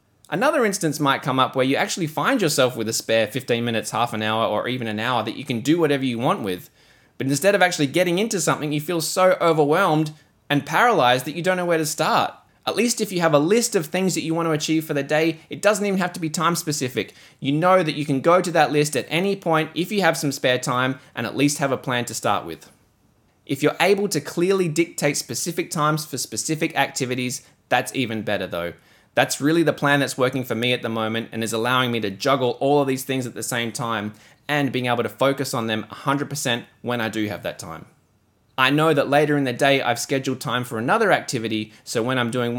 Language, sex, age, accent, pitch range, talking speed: English, male, 20-39, Australian, 120-155 Hz, 245 wpm